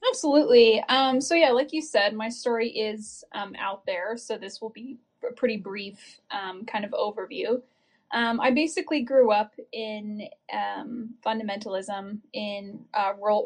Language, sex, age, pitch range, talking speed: English, female, 10-29, 210-255 Hz, 155 wpm